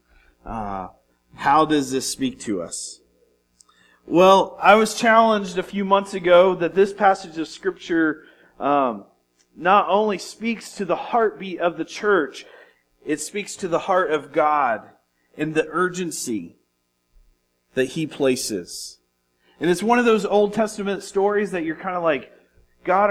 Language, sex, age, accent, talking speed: English, male, 40-59, American, 150 wpm